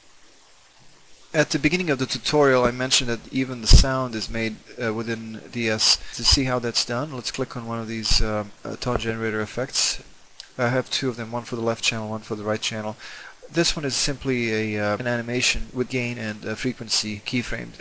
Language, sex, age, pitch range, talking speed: English, male, 30-49, 110-125 Hz, 210 wpm